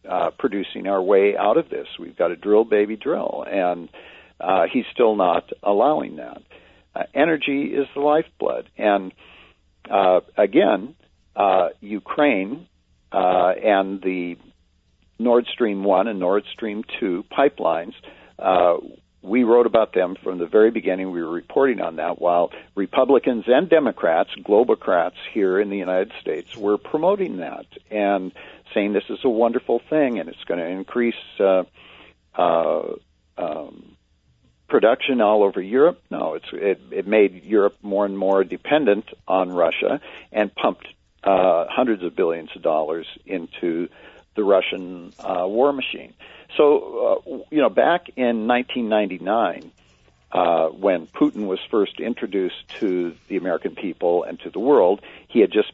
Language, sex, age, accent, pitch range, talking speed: English, male, 60-79, American, 90-115 Hz, 145 wpm